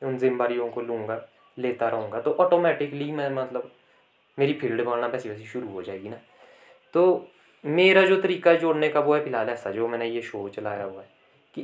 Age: 20-39